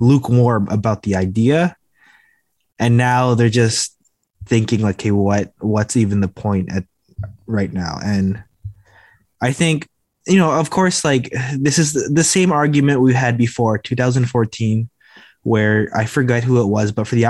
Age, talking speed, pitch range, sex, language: 20-39, 160 wpm, 105-135 Hz, male, English